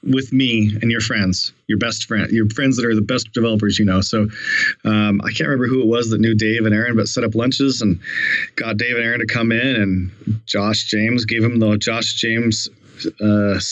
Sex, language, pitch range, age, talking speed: male, English, 105-120 Hz, 30-49, 225 wpm